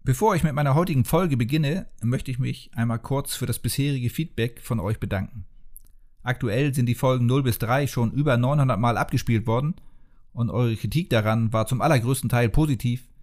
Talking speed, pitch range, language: 185 wpm, 115-140 Hz, German